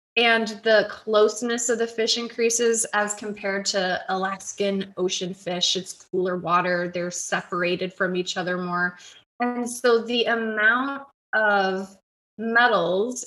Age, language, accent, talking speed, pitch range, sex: 20-39, English, American, 125 wpm, 190-235 Hz, female